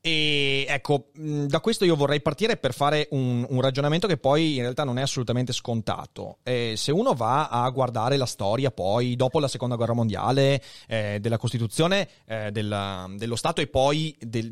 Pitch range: 110-145 Hz